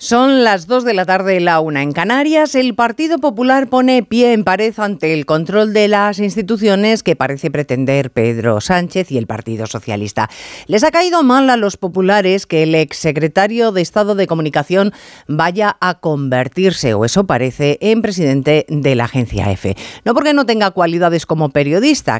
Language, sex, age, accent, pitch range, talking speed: Spanish, female, 40-59, Spanish, 140-230 Hz, 175 wpm